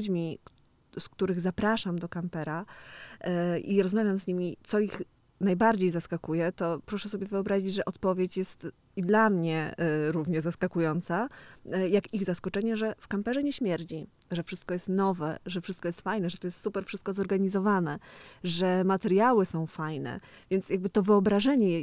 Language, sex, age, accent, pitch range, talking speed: Polish, female, 20-39, native, 165-195 Hz, 160 wpm